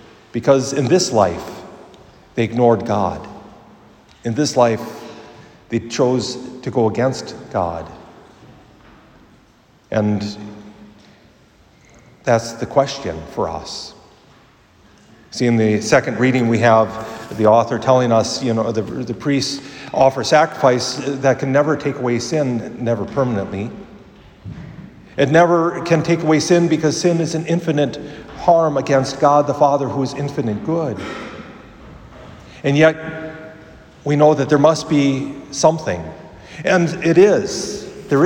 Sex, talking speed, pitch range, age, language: male, 125 wpm, 120-165 Hz, 50-69, English